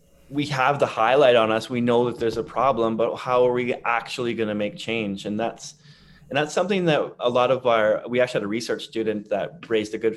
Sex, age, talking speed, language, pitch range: male, 20-39, 240 wpm, English, 105-130 Hz